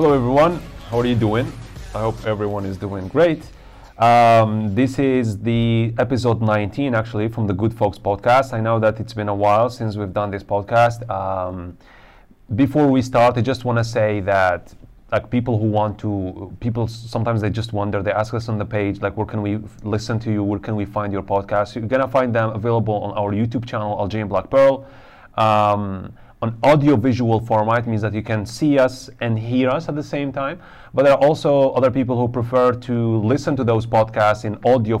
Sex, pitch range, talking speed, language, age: male, 105-125 Hz, 205 wpm, English, 30-49